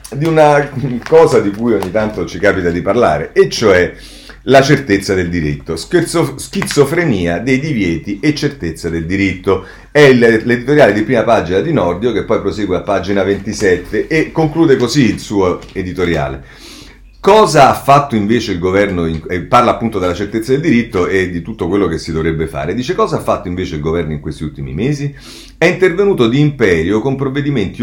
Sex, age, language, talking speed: male, 40-59, Italian, 175 wpm